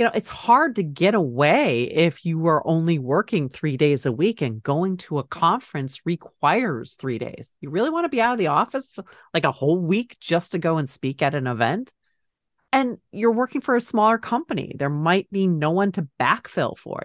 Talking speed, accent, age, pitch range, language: 210 wpm, American, 40-59, 145-205 Hz, English